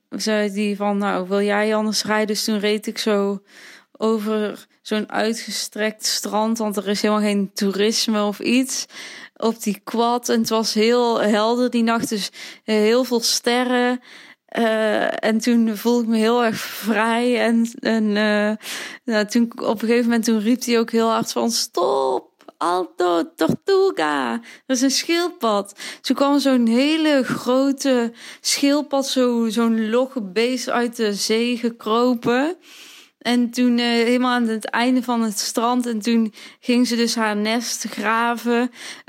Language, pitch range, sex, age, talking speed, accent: Dutch, 215-245 Hz, female, 20-39, 160 wpm, Dutch